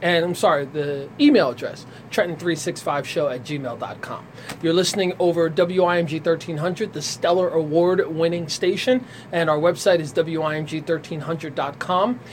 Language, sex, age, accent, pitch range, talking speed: English, male, 30-49, American, 150-185 Hz, 110 wpm